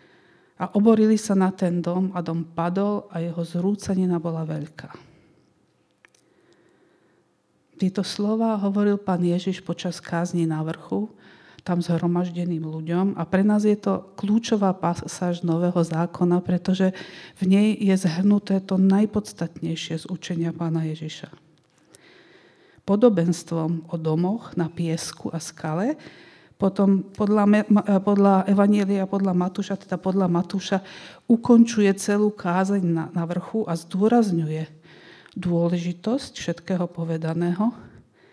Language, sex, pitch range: Slovak, female, 170-195 Hz